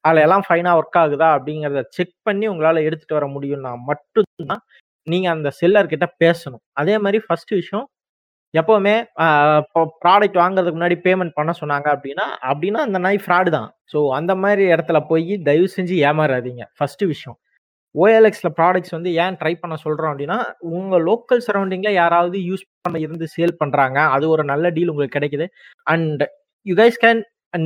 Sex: male